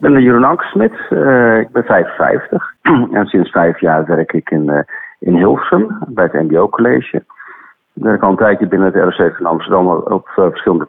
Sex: male